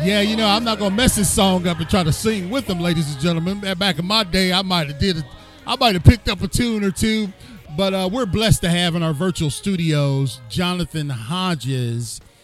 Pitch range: 130-180 Hz